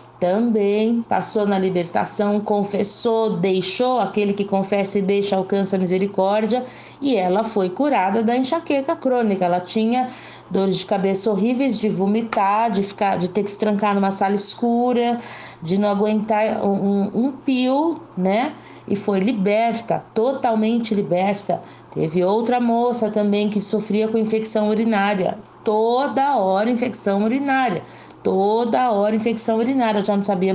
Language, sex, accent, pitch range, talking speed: Portuguese, female, Brazilian, 195-230 Hz, 145 wpm